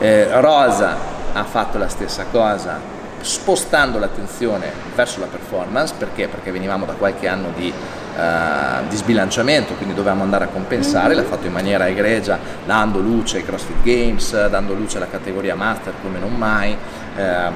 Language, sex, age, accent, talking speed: Italian, male, 30-49, native, 155 wpm